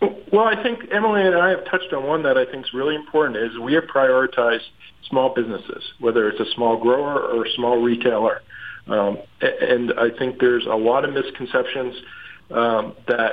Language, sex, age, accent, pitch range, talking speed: English, male, 50-69, American, 115-145 Hz, 190 wpm